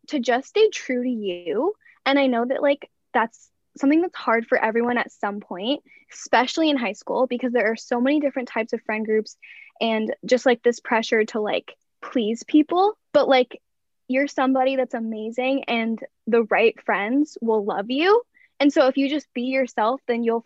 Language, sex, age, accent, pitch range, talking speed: English, female, 10-29, American, 225-275 Hz, 190 wpm